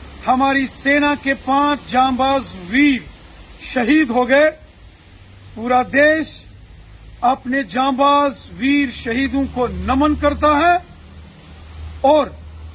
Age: 40-59